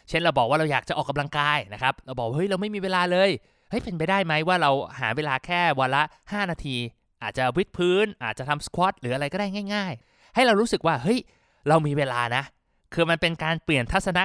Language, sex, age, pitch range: Thai, male, 20-39, 130-180 Hz